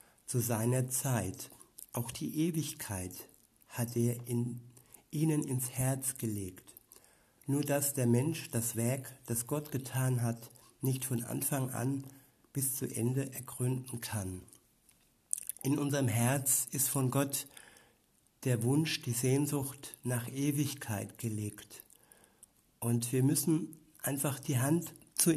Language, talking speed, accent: German, 125 wpm, German